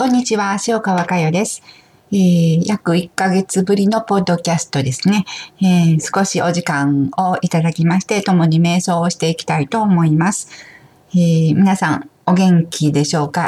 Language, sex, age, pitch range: Japanese, female, 50-69, 150-175 Hz